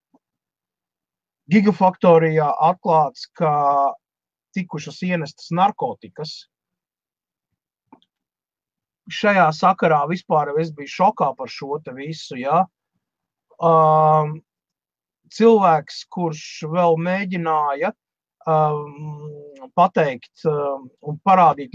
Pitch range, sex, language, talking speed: 145-180 Hz, male, English, 70 wpm